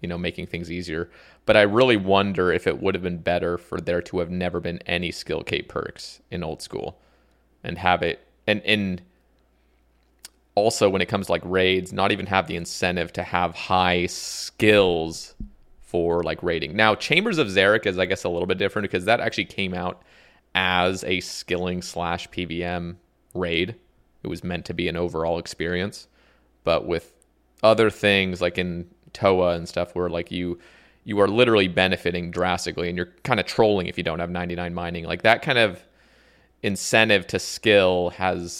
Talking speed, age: 180 wpm, 30-49